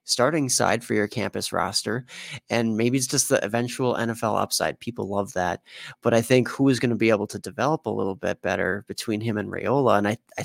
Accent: American